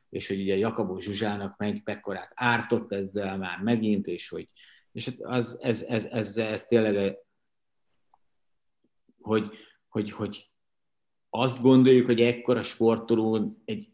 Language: Hungarian